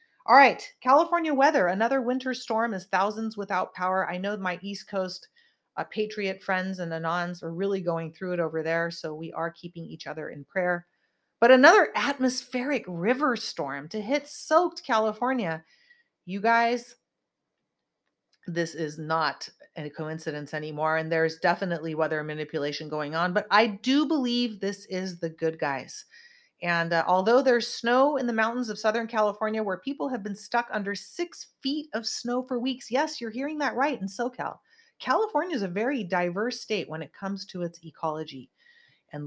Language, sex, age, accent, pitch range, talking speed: English, female, 30-49, American, 170-245 Hz, 170 wpm